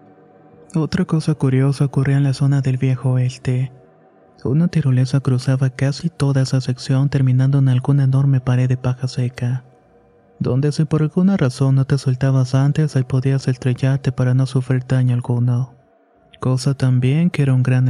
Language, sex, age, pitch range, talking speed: Spanish, male, 30-49, 130-140 Hz, 160 wpm